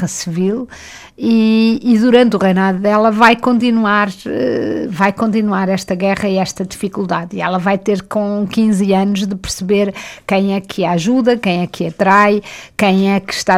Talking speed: 170 wpm